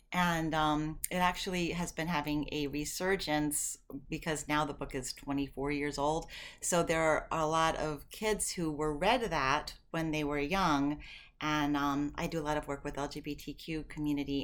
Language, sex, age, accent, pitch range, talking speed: English, female, 30-49, American, 145-180 Hz, 180 wpm